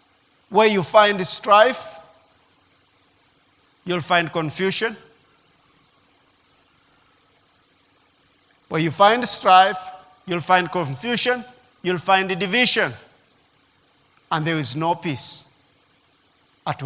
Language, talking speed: English, 80 wpm